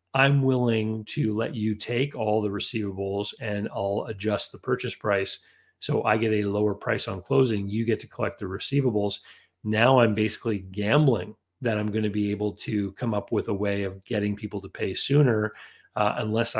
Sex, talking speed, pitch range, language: male, 190 wpm, 105-125 Hz, English